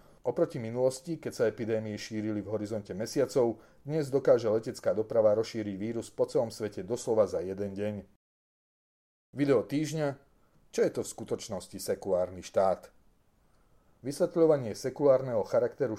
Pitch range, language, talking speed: 110-135 Hz, Slovak, 130 wpm